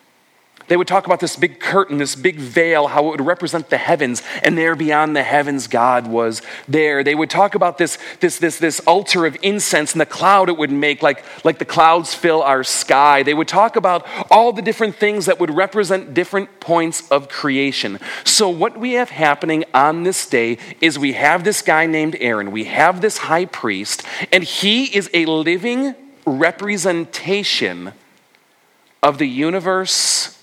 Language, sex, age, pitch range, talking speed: English, male, 40-59, 145-185 Hz, 180 wpm